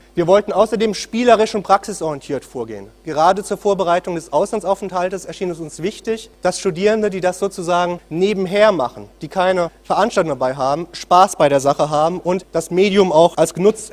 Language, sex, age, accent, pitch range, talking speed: German, male, 30-49, German, 155-195 Hz, 170 wpm